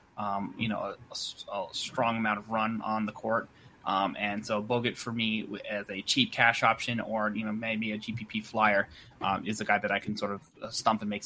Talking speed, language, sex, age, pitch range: 230 wpm, English, male, 20-39, 110-130 Hz